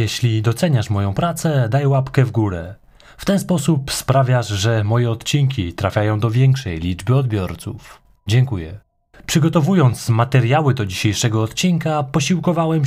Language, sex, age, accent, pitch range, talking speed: Polish, male, 20-39, native, 110-150 Hz, 125 wpm